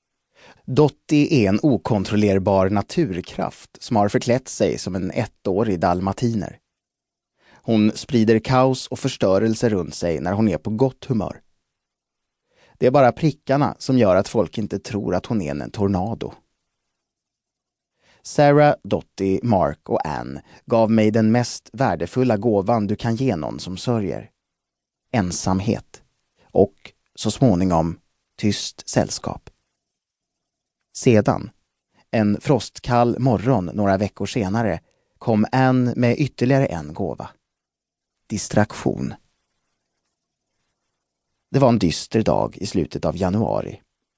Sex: male